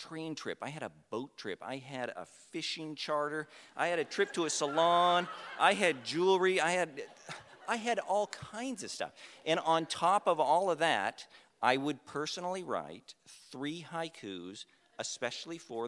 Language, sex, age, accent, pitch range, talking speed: English, male, 50-69, American, 125-175 Hz, 170 wpm